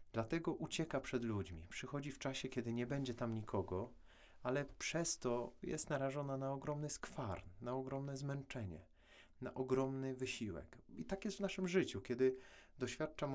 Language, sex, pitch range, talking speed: Polish, male, 90-125 Hz, 155 wpm